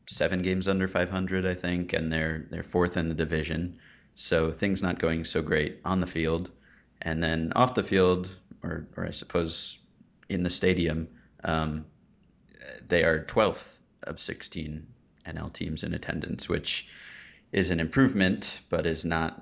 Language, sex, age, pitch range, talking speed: English, male, 30-49, 80-90 Hz, 160 wpm